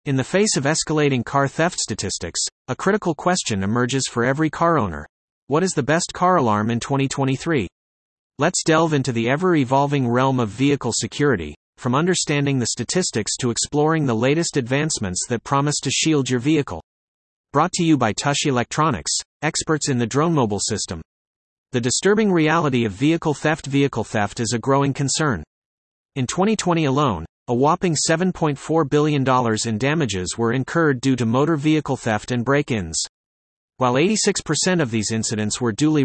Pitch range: 115-155 Hz